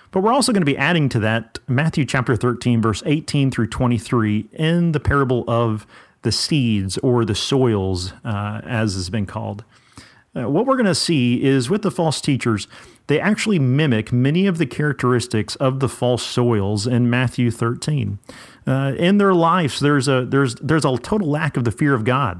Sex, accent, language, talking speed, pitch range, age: male, American, English, 190 wpm, 115-155 Hz, 40-59